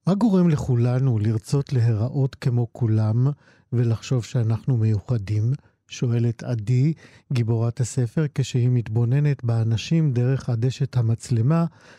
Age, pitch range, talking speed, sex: 50-69, 115-135 Hz, 100 wpm, male